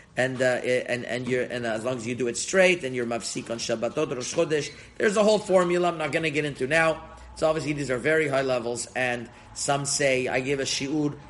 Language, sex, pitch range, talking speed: English, male, 120-155 Hz, 240 wpm